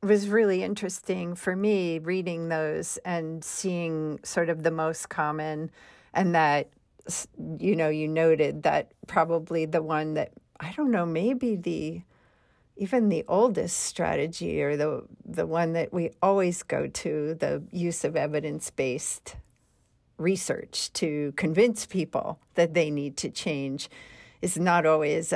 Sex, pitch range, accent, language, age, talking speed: female, 155-195 Hz, American, English, 50-69, 140 wpm